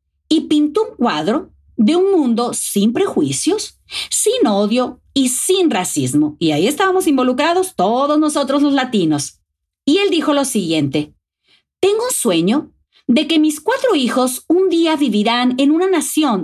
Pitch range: 220-335 Hz